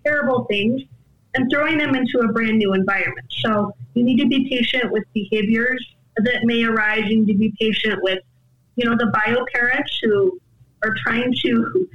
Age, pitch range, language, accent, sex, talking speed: 20-39, 200-240 Hz, English, American, female, 180 wpm